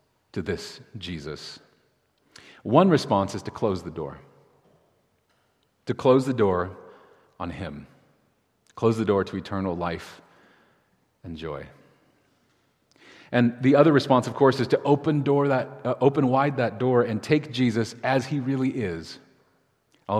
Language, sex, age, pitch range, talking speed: English, male, 40-59, 100-135 Hz, 145 wpm